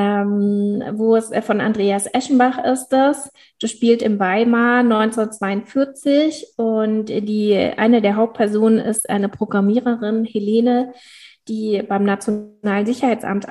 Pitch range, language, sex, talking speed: 210-245 Hz, German, female, 110 wpm